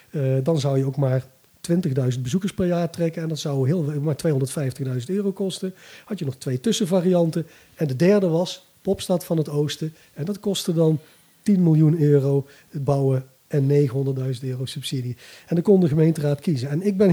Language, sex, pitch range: Dutch, male, 145-195 Hz